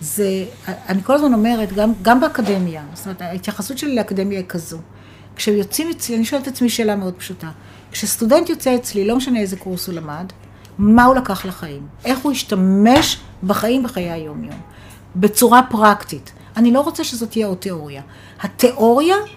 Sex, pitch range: female, 185-260 Hz